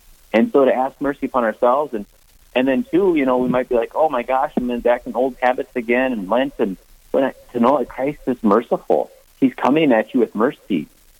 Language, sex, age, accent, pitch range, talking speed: English, male, 30-49, American, 110-145 Hz, 225 wpm